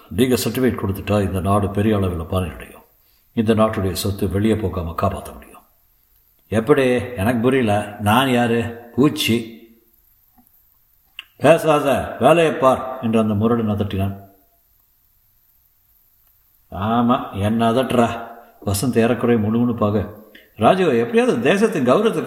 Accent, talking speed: native, 100 wpm